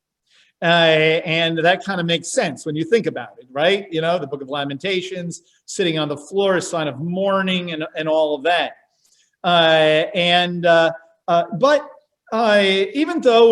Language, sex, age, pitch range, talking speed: English, male, 50-69, 175-235 Hz, 175 wpm